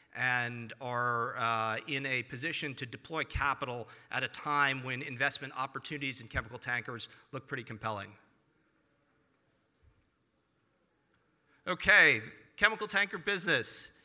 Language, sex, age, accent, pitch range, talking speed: English, male, 40-59, American, 125-160 Hz, 105 wpm